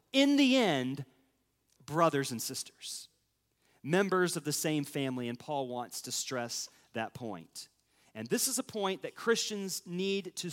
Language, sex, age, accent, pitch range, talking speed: English, male, 40-59, American, 140-230 Hz, 155 wpm